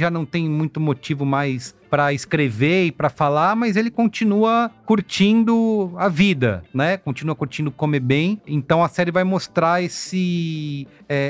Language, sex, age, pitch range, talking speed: Portuguese, male, 30-49, 135-180 Hz, 155 wpm